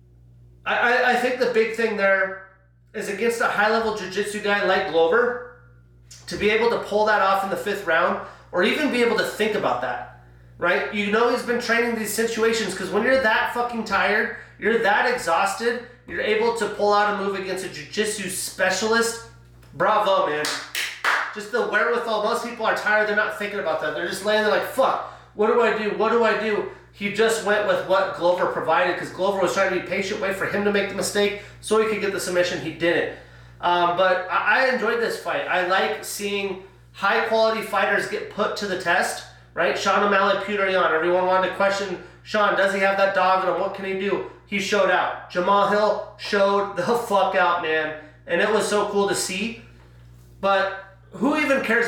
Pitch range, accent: 185-220 Hz, American